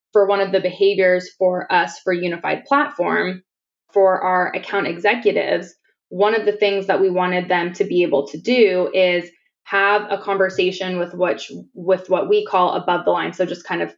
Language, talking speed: English, 190 wpm